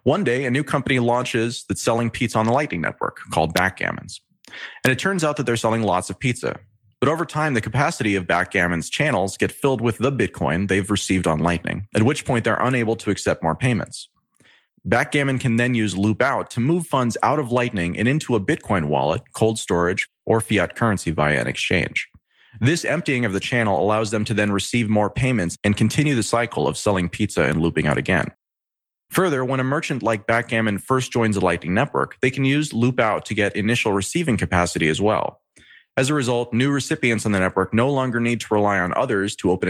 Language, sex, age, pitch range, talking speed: English, male, 30-49, 100-130 Hz, 210 wpm